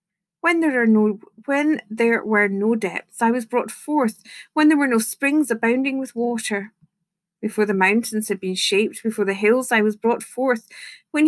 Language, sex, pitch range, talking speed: English, female, 200-250 Hz, 170 wpm